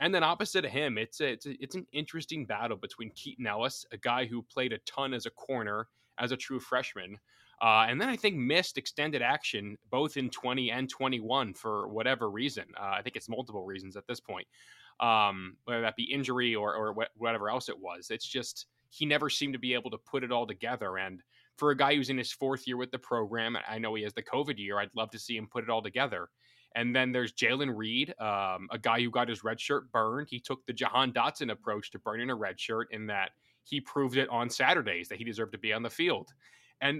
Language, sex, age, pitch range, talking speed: English, male, 20-39, 110-135 Hz, 240 wpm